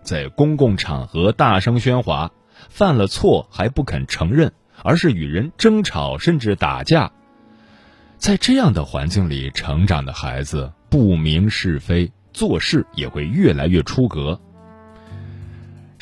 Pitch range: 80-120 Hz